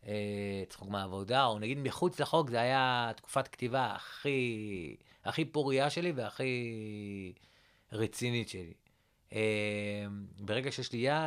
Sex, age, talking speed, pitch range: male, 30-49, 115 wpm, 115-155 Hz